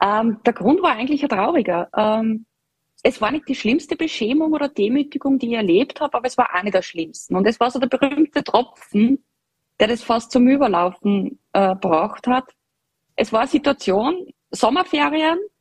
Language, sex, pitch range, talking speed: German, female, 185-260 Hz, 170 wpm